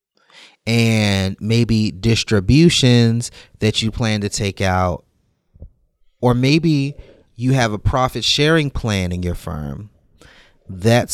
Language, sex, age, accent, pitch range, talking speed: English, male, 30-49, American, 100-125 Hz, 115 wpm